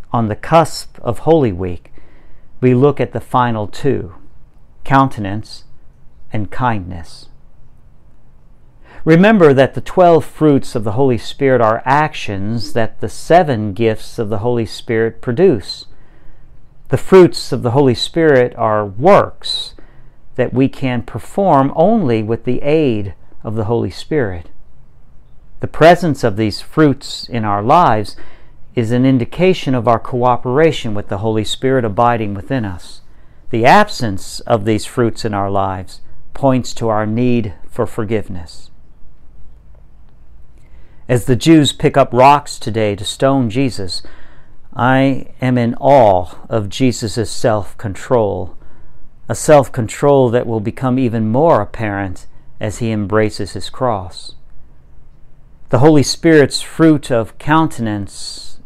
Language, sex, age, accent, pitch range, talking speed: English, male, 50-69, American, 105-135 Hz, 130 wpm